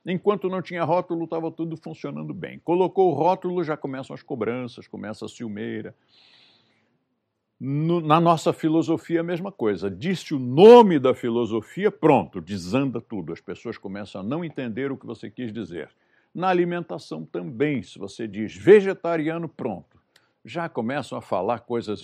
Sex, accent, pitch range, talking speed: male, Brazilian, 115-175 Hz, 150 wpm